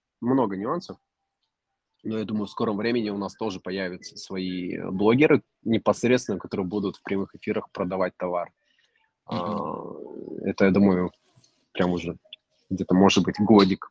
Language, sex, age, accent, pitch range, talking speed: Russian, male, 20-39, native, 90-105 Hz, 135 wpm